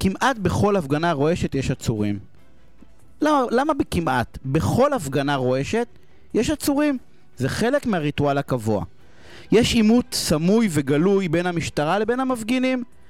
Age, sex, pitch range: 30-49, male, 135-220 Hz